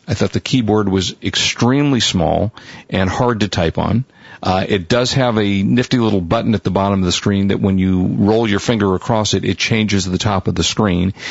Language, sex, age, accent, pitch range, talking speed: English, male, 50-69, American, 95-115 Hz, 220 wpm